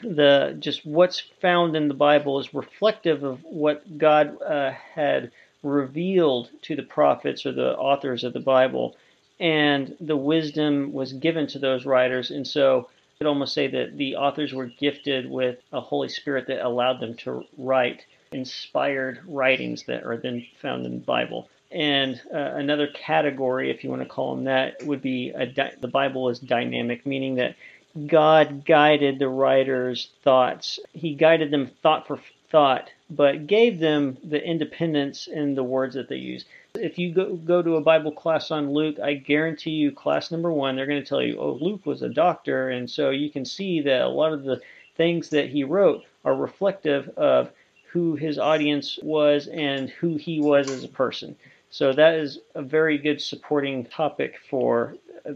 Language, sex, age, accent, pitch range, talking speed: English, male, 40-59, American, 130-155 Hz, 180 wpm